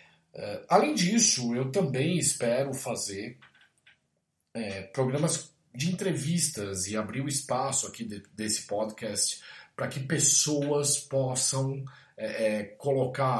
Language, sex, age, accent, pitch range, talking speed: Portuguese, male, 40-59, Brazilian, 100-135 Hz, 95 wpm